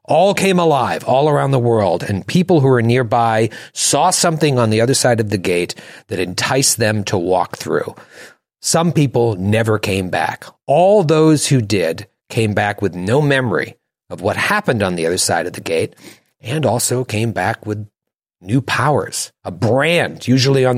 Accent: American